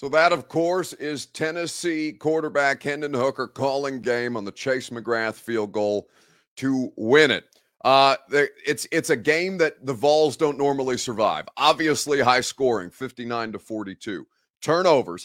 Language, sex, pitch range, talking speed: English, male, 125-155 Hz, 150 wpm